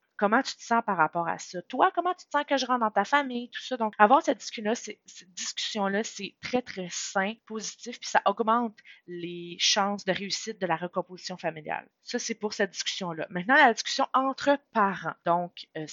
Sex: female